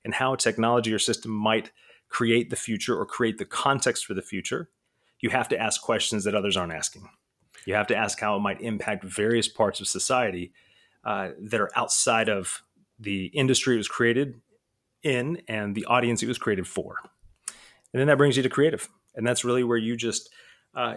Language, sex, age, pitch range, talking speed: English, male, 30-49, 115-140 Hz, 200 wpm